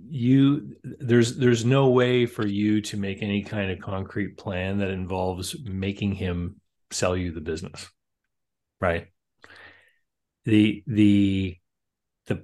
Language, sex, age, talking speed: English, male, 30-49, 125 wpm